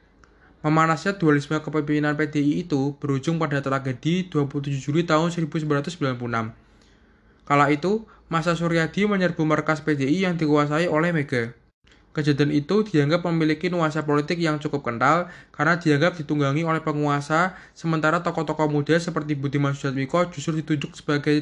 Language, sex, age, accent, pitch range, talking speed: Indonesian, male, 20-39, native, 145-165 Hz, 130 wpm